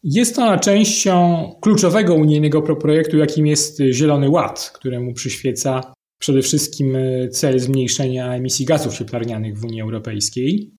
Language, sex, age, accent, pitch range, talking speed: Polish, male, 30-49, native, 145-180 Hz, 120 wpm